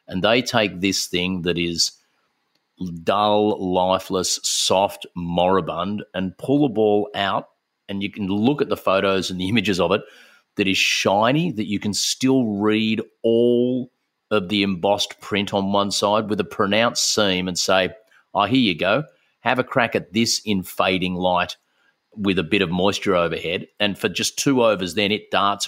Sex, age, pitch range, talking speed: male, 40-59, 90-110 Hz, 180 wpm